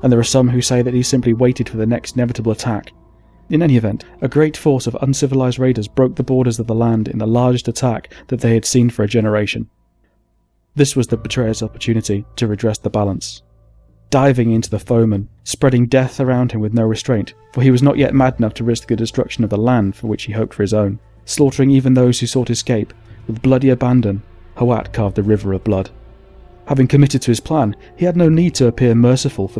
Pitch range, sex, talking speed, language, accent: 105-125 Hz, male, 225 wpm, English, British